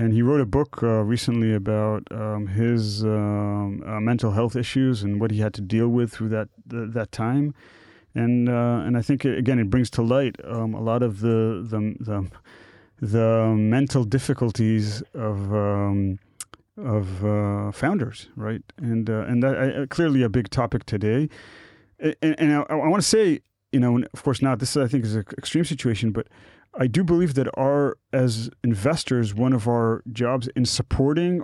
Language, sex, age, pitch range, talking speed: Hebrew, male, 30-49, 110-140 Hz, 185 wpm